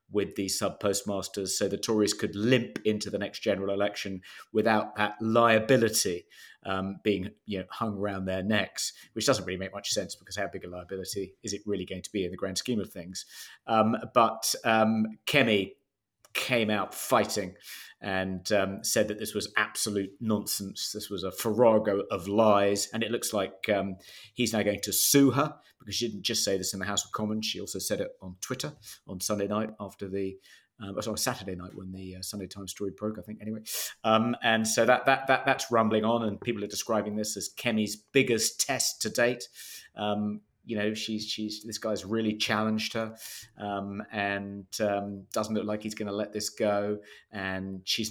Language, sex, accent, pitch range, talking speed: English, male, British, 100-110 Hz, 195 wpm